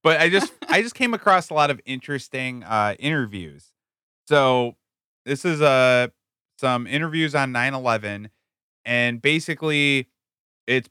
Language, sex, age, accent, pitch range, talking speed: English, male, 20-39, American, 105-130 Hz, 130 wpm